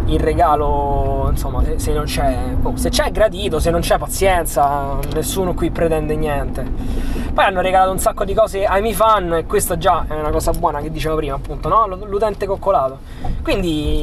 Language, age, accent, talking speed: Italian, 20-39, native, 185 wpm